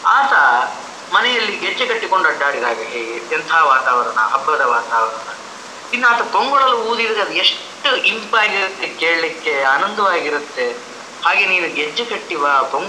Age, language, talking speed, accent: 30-49, English, 50 wpm, Indian